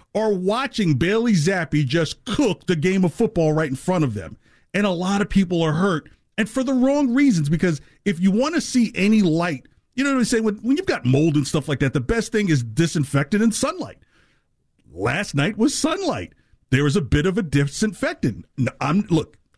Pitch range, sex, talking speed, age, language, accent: 135-200 Hz, male, 210 wpm, 40-59, English, American